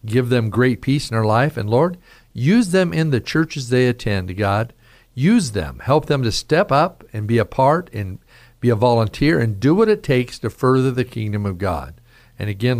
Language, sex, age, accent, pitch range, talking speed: English, male, 50-69, American, 100-130 Hz, 210 wpm